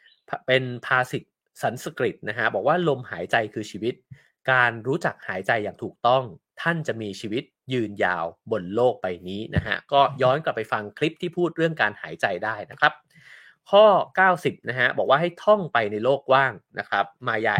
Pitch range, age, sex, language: 110-160 Hz, 20-39, male, English